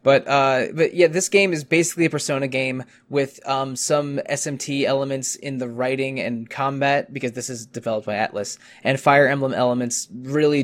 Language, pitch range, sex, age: English, 115-135 Hz, male, 20-39